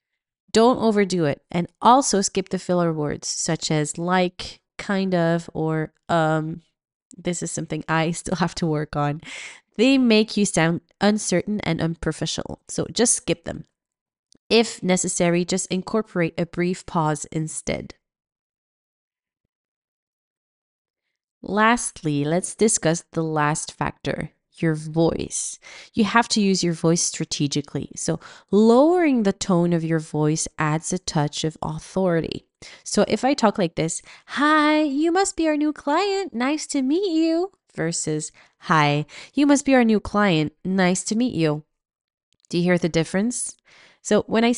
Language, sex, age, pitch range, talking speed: English, female, 20-39, 160-225 Hz, 145 wpm